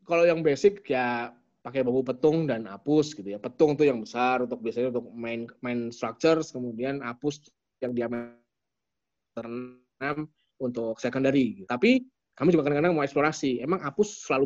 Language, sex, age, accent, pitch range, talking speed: Indonesian, male, 20-39, native, 120-155 Hz, 155 wpm